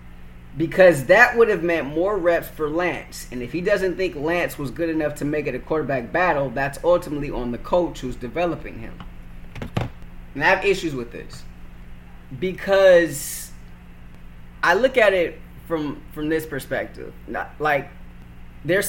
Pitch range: 120-170 Hz